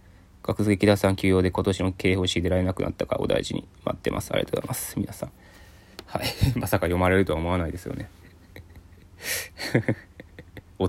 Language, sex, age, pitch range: Japanese, male, 20-39, 90-100 Hz